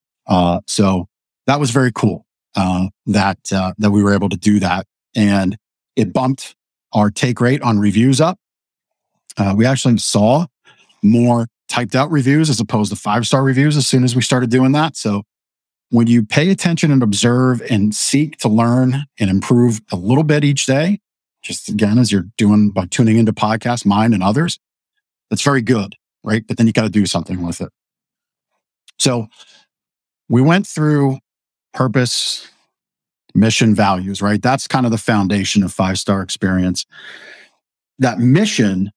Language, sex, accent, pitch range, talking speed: English, male, American, 105-130 Hz, 165 wpm